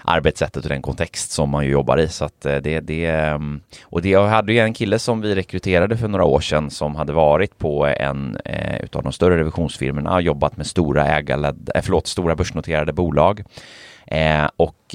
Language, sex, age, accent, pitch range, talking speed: Swedish, male, 30-49, native, 75-95 Hz, 190 wpm